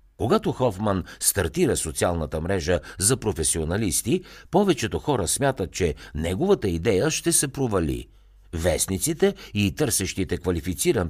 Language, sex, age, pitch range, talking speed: Bulgarian, male, 60-79, 85-120 Hz, 110 wpm